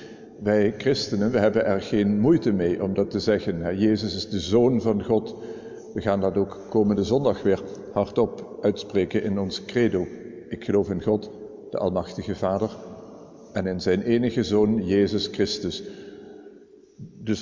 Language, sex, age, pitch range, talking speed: Dutch, male, 50-69, 105-125 Hz, 155 wpm